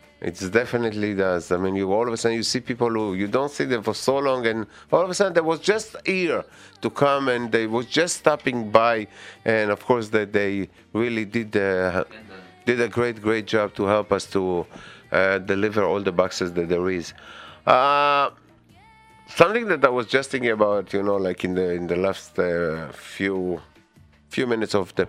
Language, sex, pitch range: English, male, 90-110 Hz